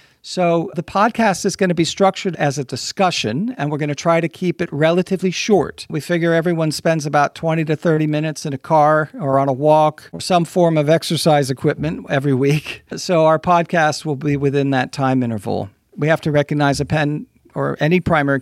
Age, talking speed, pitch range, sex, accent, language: 50-69, 205 wpm, 140-175 Hz, male, American, English